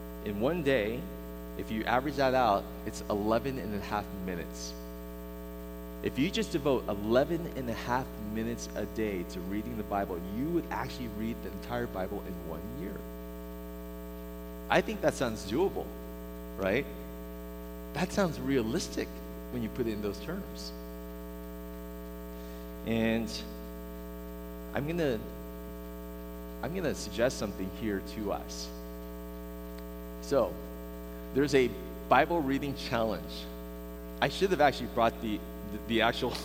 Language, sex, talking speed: English, male, 135 wpm